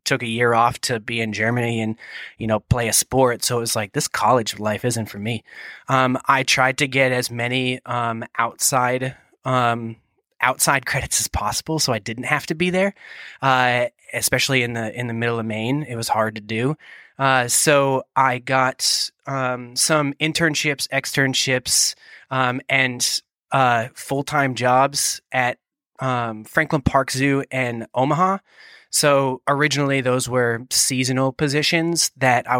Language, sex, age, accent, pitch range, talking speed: English, male, 20-39, American, 115-135 Hz, 160 wpm